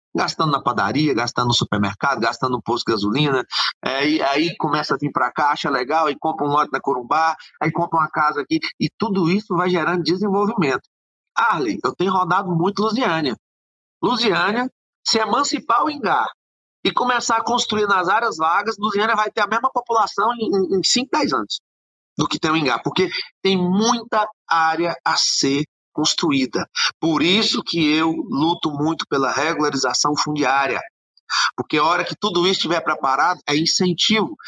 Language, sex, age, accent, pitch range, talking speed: Portuguese, male, 30-49, Brazilian, 150-215 Hz, 175 wpm